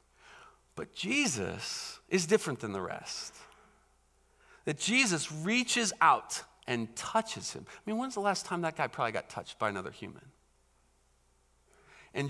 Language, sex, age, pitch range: English, male, 40-59, 140-225 Hz